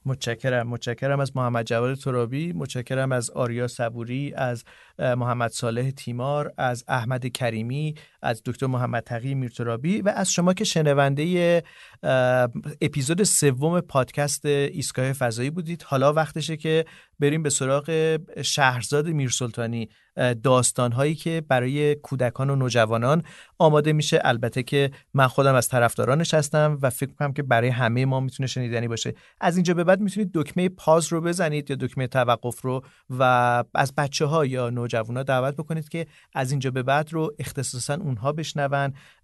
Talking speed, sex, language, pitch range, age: 150 wpm, male, Persian, 125-155 Hz, 40-59